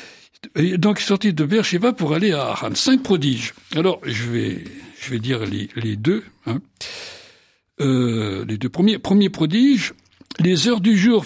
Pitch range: 135-210 Hz